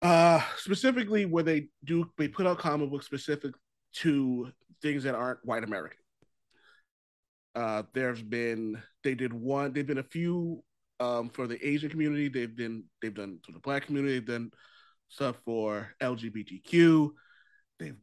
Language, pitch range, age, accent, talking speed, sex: English, 125-160 Hz, 30-49, American, 155 wpm, male